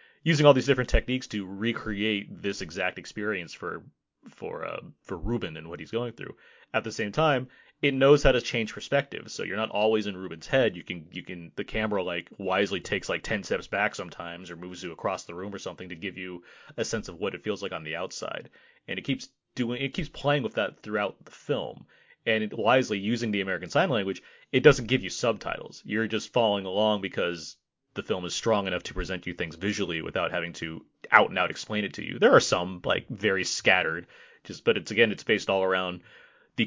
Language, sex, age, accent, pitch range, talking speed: English, male, 30-49, American, 95-125 Hz, 225 wpm